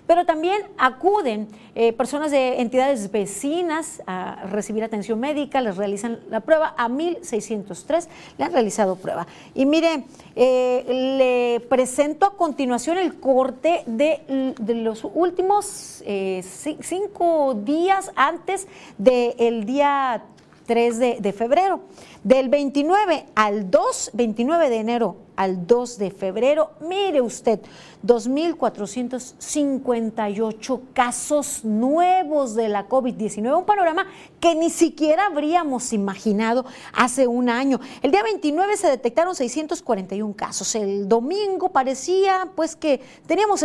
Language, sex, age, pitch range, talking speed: Spanish, female, 40-59, 225-320 Hz, 120 wpm